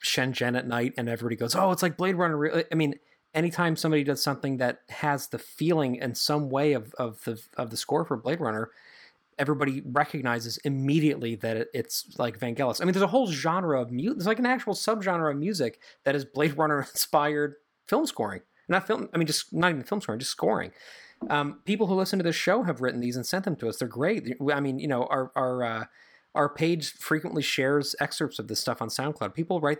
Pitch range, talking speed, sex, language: 125-160 Hz, 220 wpm, male, English